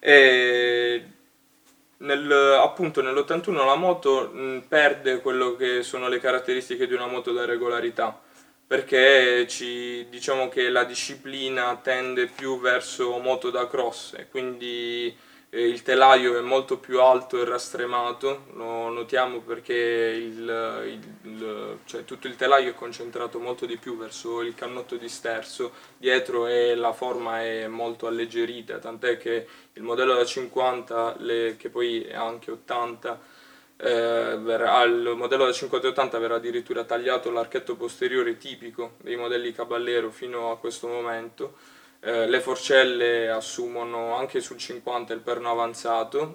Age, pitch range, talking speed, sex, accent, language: 20-39, 115-130 Hz, 130 wpm, male, native, Italian